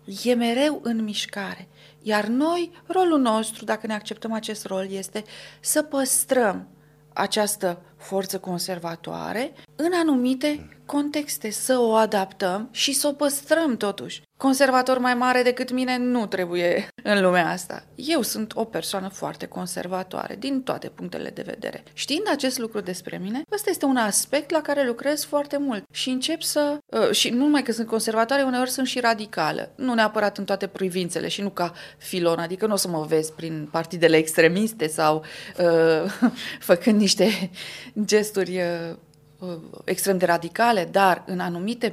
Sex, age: female, 30-49